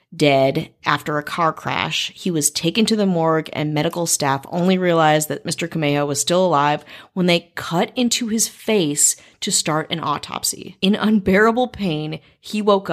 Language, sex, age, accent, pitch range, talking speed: English, female, 30-49, American, 160-200 Hz, 170 wpm